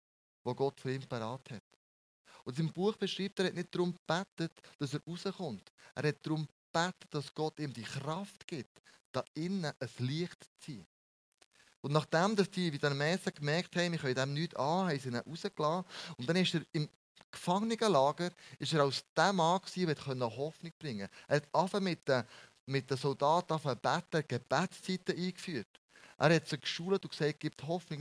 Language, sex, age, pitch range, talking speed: German, male, 30-49, 130-170 Hz, 195 wpm